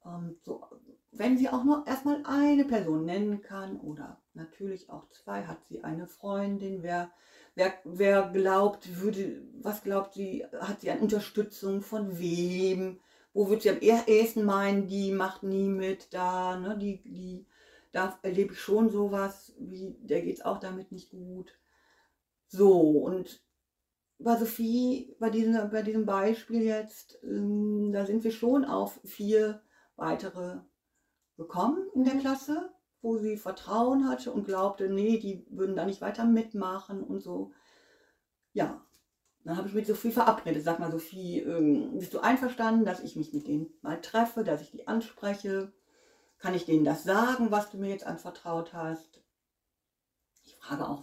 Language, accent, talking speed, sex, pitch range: German, German, 155 wpm, female, 185-225 Hz